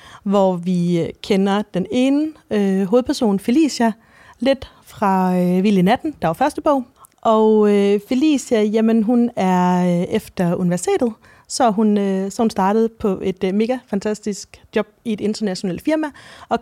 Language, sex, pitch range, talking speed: Danish, female, 185-225 Hz, 155 wpm